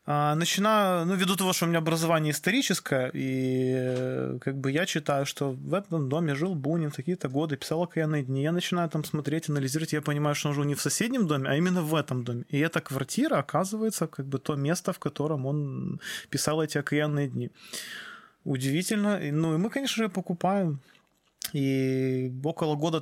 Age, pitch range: 20-39, 135-165 Hz